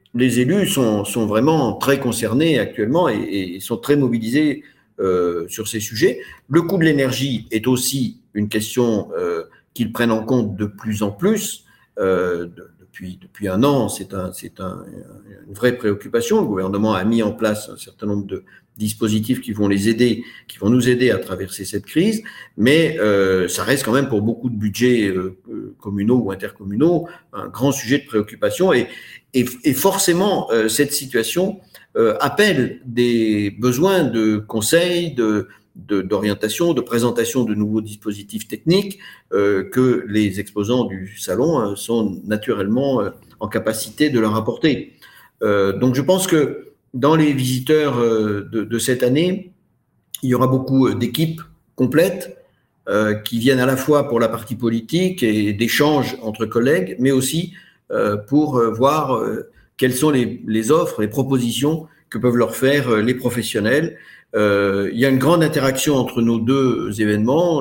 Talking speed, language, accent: 160 wpm, French, French